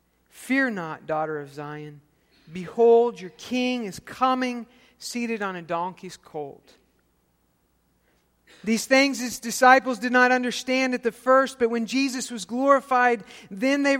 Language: English